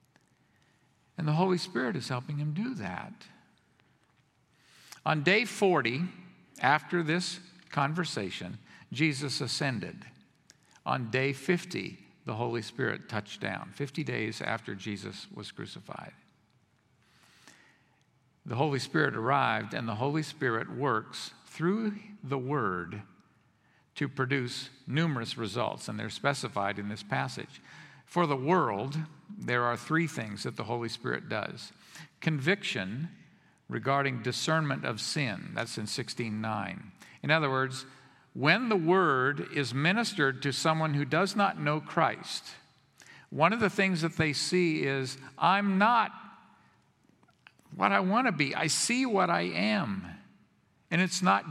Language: English